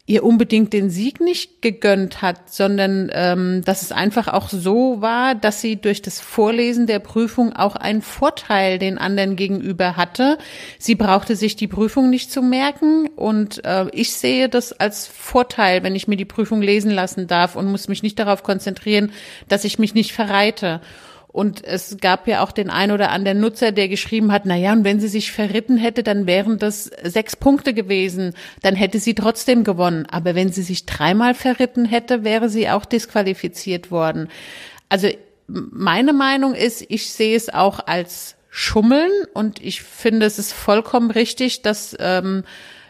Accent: German